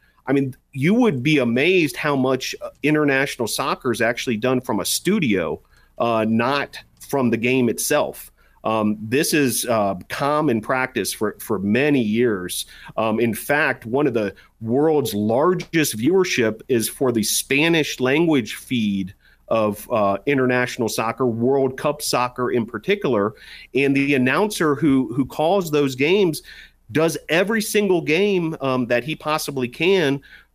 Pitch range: 115-145 Hz